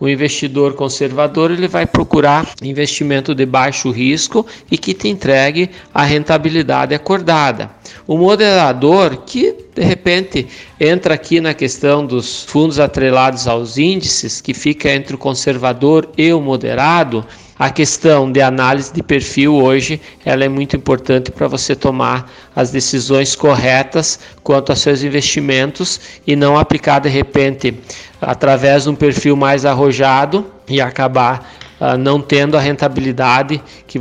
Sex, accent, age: male, Brazilian, 50-69